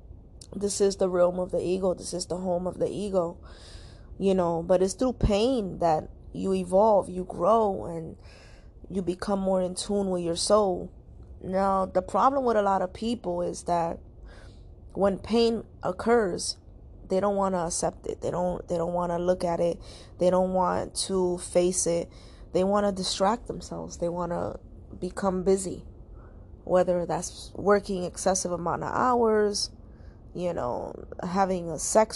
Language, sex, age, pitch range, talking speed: English, female, 20-39, 175-200 Hz, 170 wpm